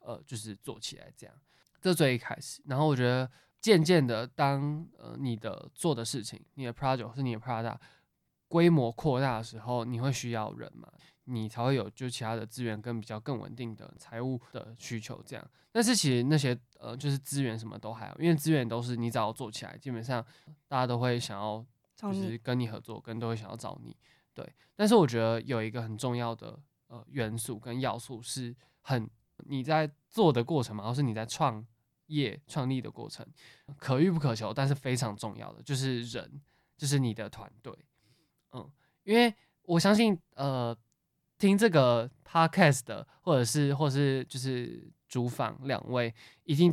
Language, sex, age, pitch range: Chinese, male, 20-39, 115-145 Hz